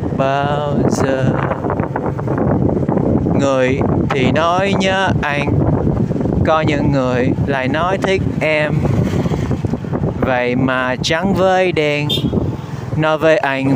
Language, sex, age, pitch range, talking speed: Vietnamese, male, 20-39, 135-165 Hz, 95 wpm